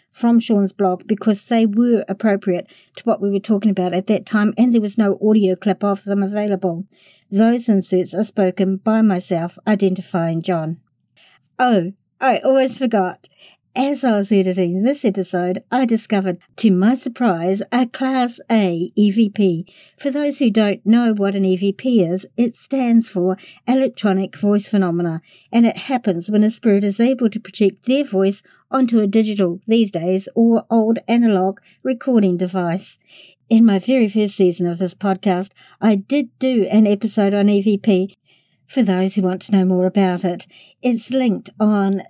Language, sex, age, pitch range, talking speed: English, male, 50-69, 190-230 Hz, 165 wpm